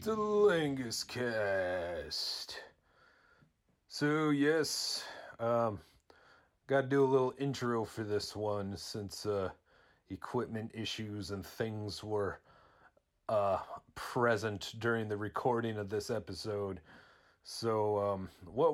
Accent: American